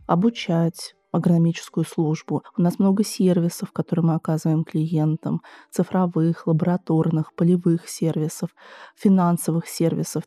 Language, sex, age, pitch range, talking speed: Russian, female, 20-39, 165-195 Hz, 100 wpm